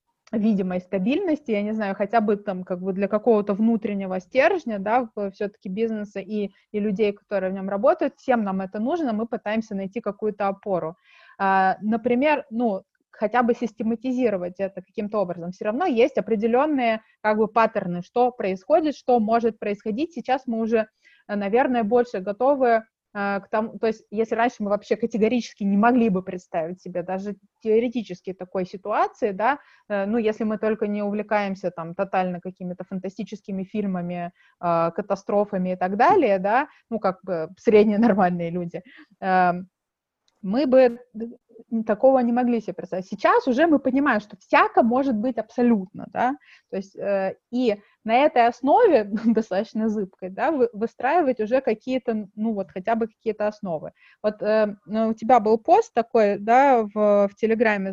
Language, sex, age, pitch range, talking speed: Russian, female, 20-39, 195-240 Hz, 150 wpm